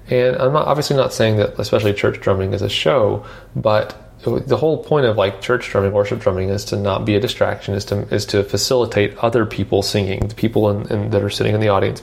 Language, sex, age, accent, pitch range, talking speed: English, male, 30-49, American, 100-120 Hz, 235 wpm